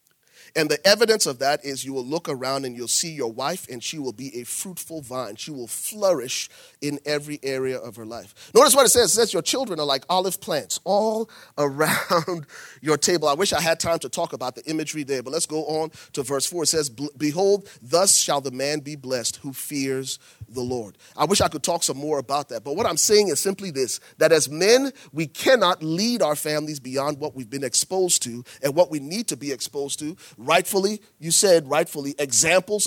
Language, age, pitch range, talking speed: English, 30-49, 135-185 Hz, 220 wpm